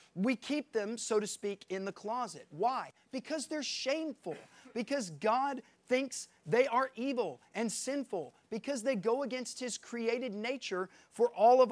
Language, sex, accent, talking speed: English, male, American, 160 wpm